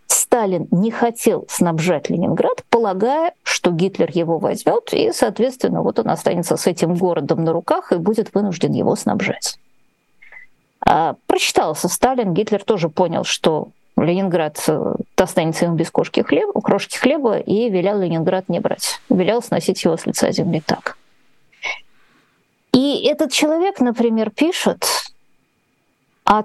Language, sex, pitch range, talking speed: Russian, female, 180-250 Hz, 130 wpm